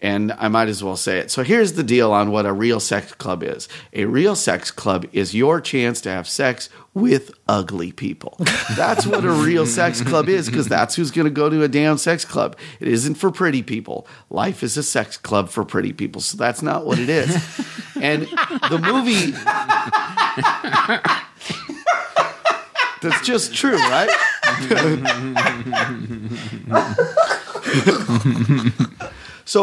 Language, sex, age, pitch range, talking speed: English, male, 40-59, 125-175 Hz, 155 wpm